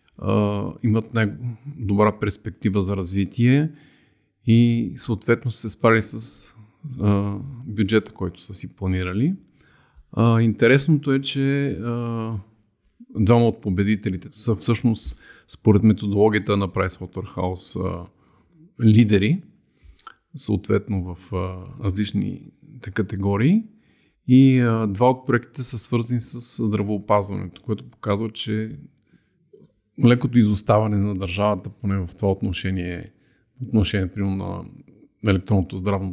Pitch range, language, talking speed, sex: 100-120 Hz, Bulgarian, 105 wpm, male